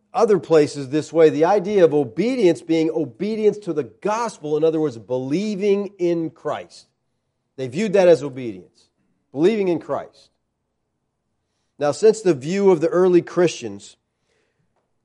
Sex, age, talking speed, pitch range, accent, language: male, 40-59, 140 wpm, 120-165 Hz, American, English